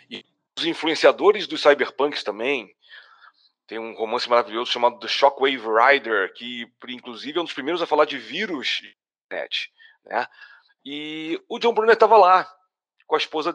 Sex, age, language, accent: male, 40-59, Portuguese, Brazilian